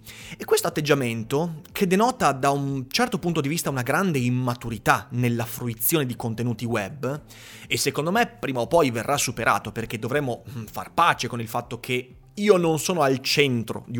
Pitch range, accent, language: 120-160 Hz, native, Italian